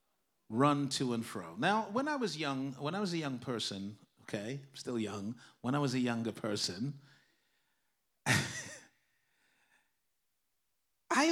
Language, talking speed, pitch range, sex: English, 140 wpm, 135-220 Hz, male